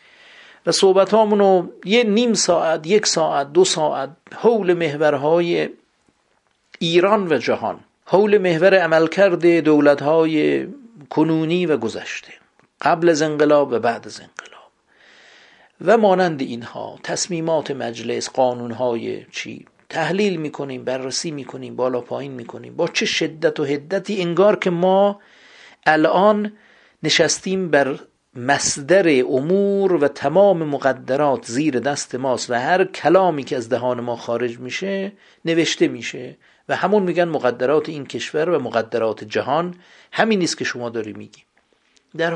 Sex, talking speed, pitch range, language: male, 130 wpm, 140-190 Hz, Persian